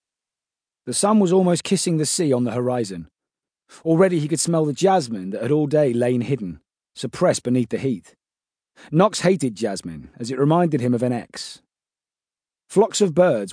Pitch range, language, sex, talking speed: 120-160 Hz, English, male, 175 wpm